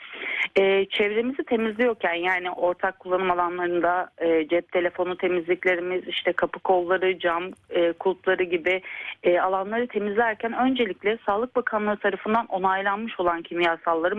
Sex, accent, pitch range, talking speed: female, native, 180-240 Hz, 120 wpm